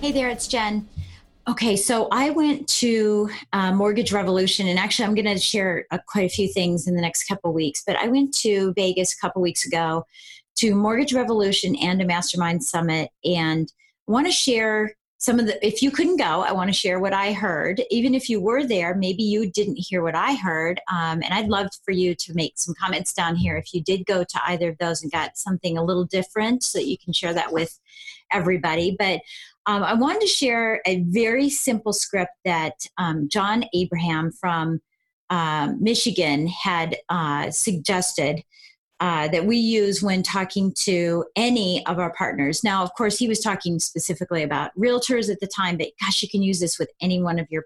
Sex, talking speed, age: female, 205 wpm, 40-59